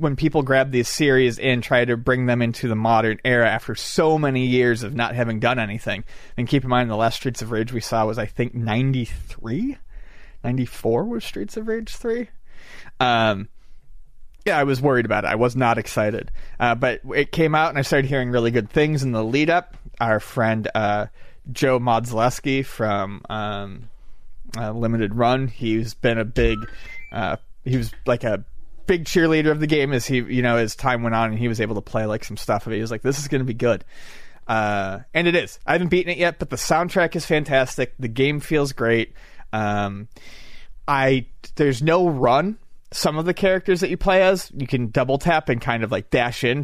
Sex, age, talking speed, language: male, 30-49, 210 wpm, English